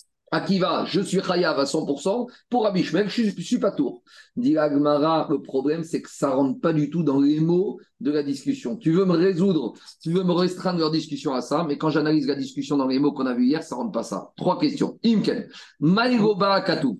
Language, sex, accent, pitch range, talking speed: French, male, French, 155-205 Hz, 235 wpm